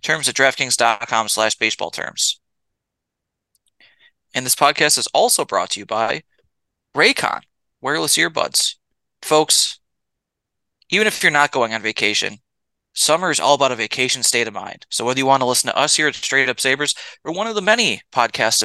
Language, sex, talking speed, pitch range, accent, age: English, male, 170 wpm, 120-150 Hz, American, 20-39